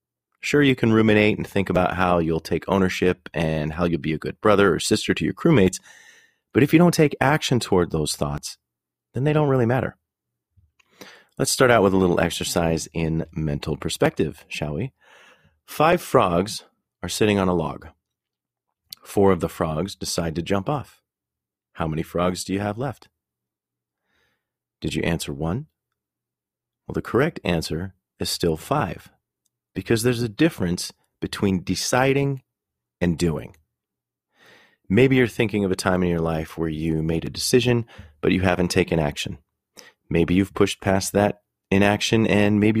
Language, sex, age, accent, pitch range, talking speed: English, male, 30-49, American, 85-115 Hz, 165 wpm